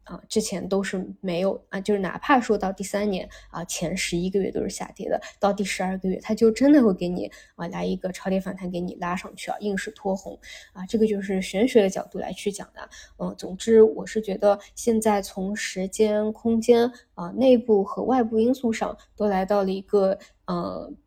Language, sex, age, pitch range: Chinese, female, 10-29, 190-220 Hz